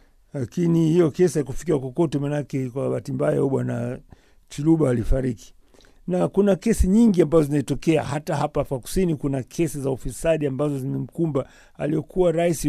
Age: 50-69